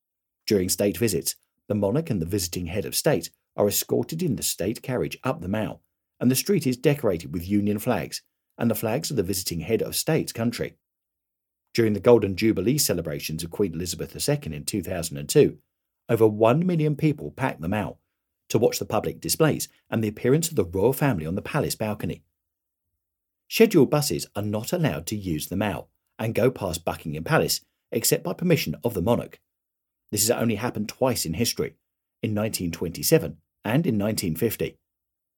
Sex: male